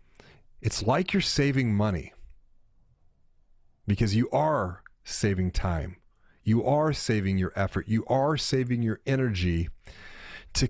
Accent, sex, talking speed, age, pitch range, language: American, male, 120 wpm, 30-49, 100-135 Hz, English